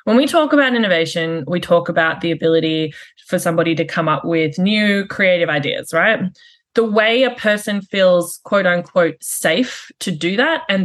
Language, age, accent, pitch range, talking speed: English, 20-39, Australian, 175-235 Hz, 175 wpm